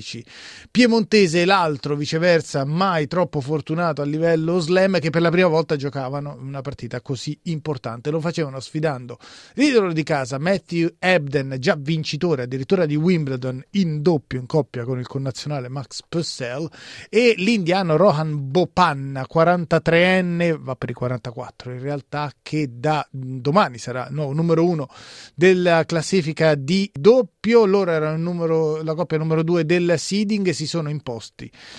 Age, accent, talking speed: 30-49, native, 145 wpm